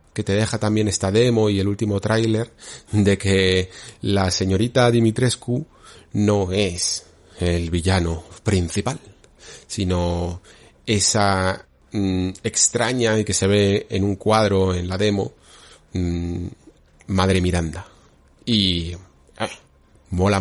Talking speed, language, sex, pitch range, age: 110 wpm, Spanish, male, 95-115 Hz, 30-49